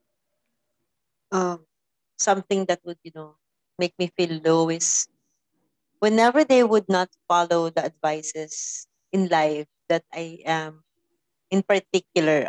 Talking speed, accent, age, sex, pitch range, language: 120 wpm, Filipino, 30-49, female, 170-205 Hz, English